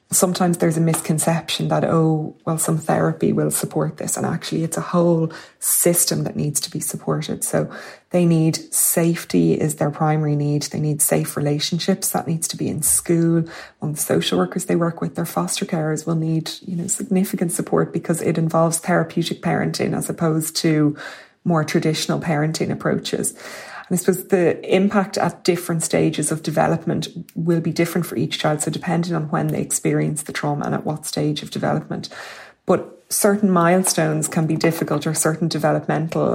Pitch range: 155-175 Hz